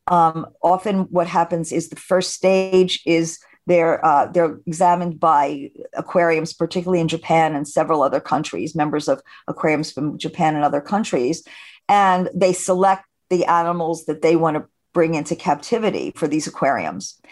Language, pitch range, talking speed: English, 160-185 Hz, 155 wpm